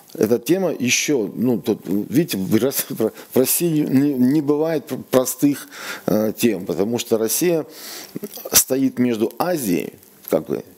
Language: Russian